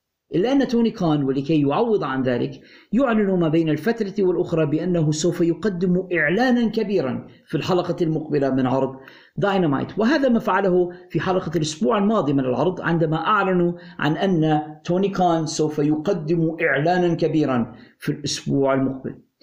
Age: 50-69